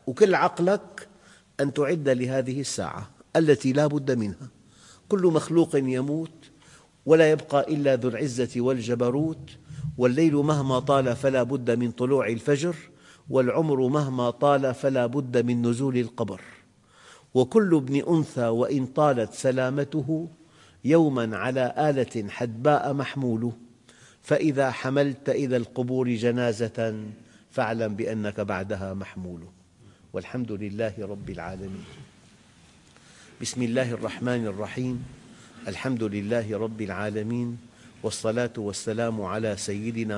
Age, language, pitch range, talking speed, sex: 50-69, English, 110-135 Hz, 105 wpm, male